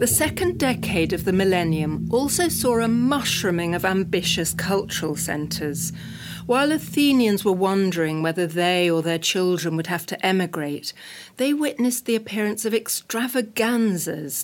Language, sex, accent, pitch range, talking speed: Greek, female, British, 160-230 Hz, 135 wpm